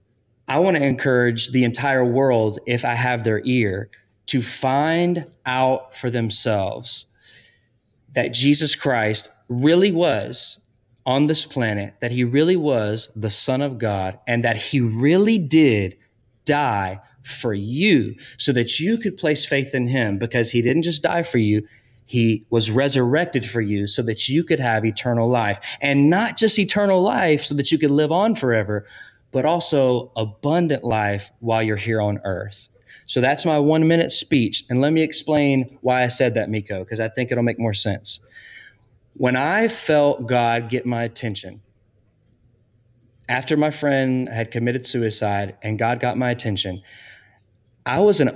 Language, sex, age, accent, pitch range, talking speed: English, male, 30-49, American, 110-145 Hz, 165 wpm